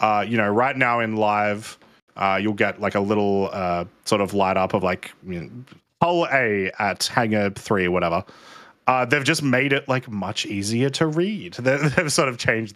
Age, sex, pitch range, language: 20-39, male, 100-130 Hz, English